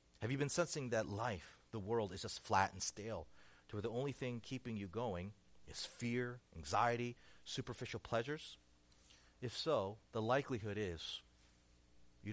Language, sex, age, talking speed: English, male, 40-59, 155 wpm